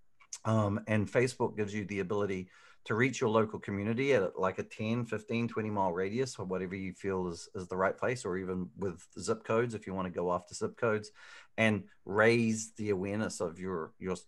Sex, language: male, English